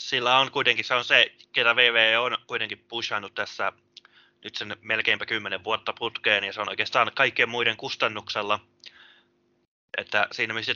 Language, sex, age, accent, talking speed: English, male, 20-39, Finnish, 155 wpm